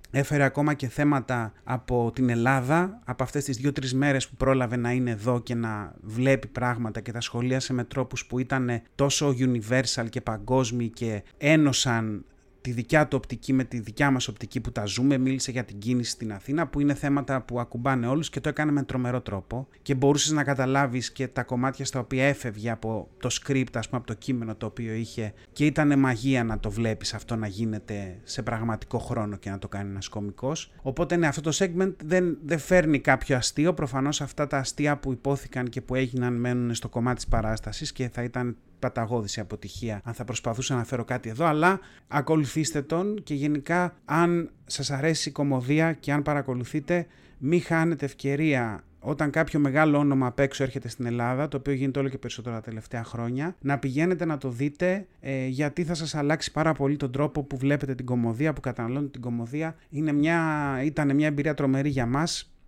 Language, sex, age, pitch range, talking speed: Greek, male, 30-49, 120-145 Hz, 190 wpm